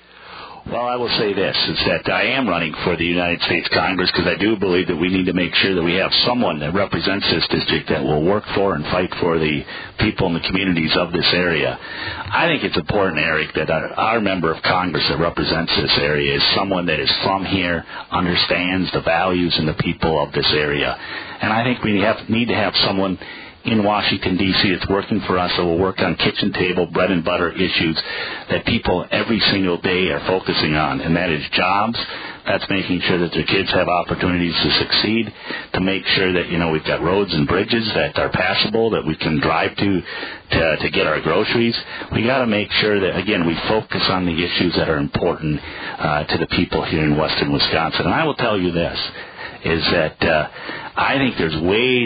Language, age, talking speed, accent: English, 50-69, 215 wpm, American